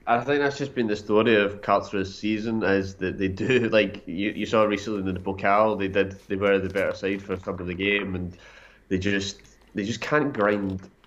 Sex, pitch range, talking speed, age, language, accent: male, 100-115 Hz, 230 wpm, 20-39, English, British